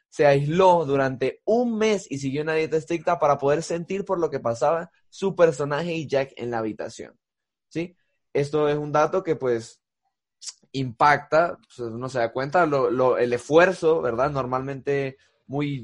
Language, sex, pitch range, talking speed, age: Spanish, male, 135-180 Hz, 165 wpm, 20-39